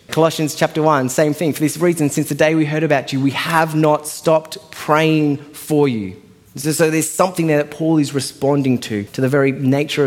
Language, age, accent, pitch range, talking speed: English, 20-39, Australian, 120-155 Hz, 215 wpm